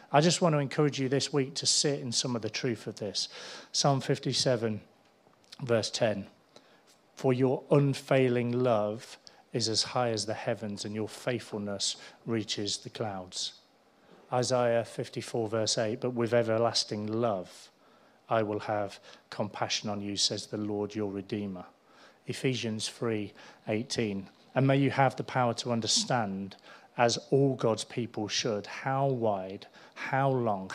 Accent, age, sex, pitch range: British, 40-59, male, 105-130 Hz